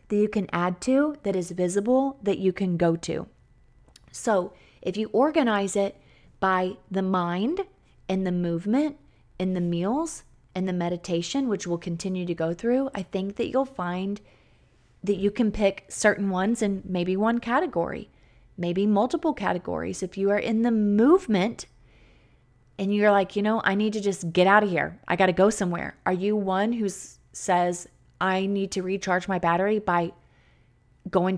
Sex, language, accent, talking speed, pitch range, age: female, English, American, 175 wpm, 180-225 Hz, 30-49